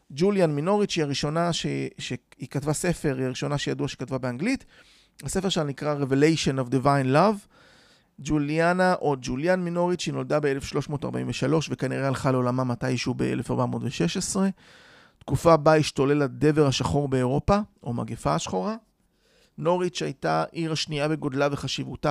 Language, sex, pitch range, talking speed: Hebrew, male, 135-175 Hz, 130 wpm